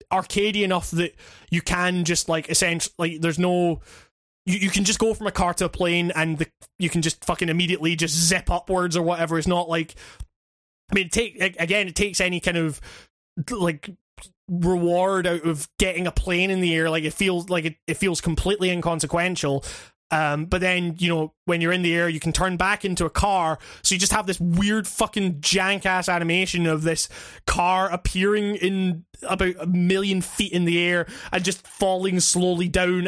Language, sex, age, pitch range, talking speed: English, male, 20-39, 170-195 Hz, 200 wpm